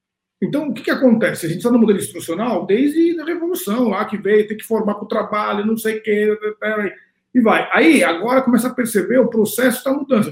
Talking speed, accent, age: 220 wpm, Brazilian, 50-69